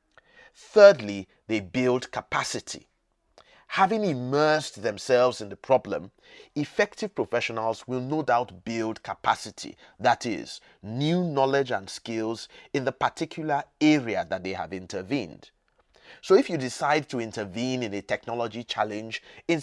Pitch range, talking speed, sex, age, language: 115-150 Hz, 130 wpm, male, 30-49, English